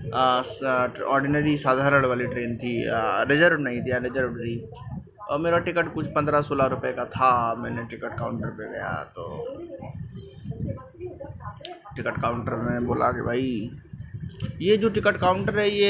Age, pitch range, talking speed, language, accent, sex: 20-39, 120-150 Hz, 150 wpm, Hindi, native, male